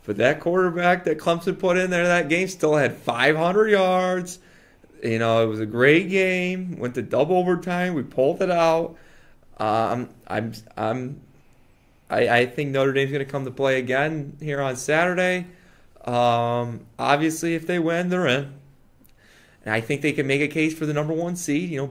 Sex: male